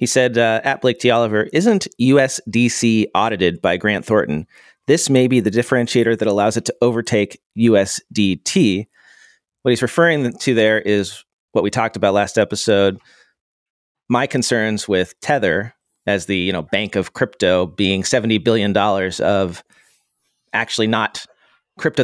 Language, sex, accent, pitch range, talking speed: English, male, American, 95-120 Hz, 145 wpm